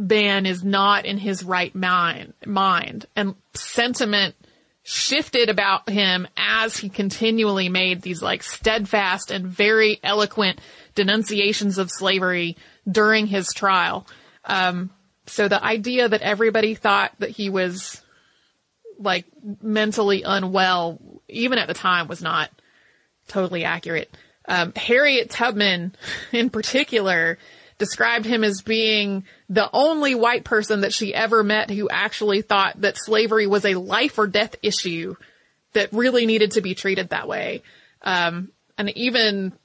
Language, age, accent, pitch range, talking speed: English, 30-49, American, 185-220 Hz, 135 wpm